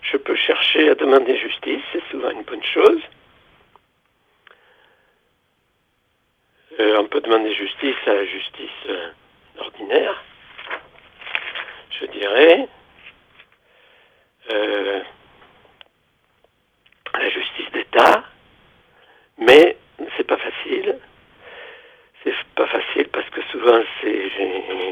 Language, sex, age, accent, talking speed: French, male, 60-79, French, 95 wpm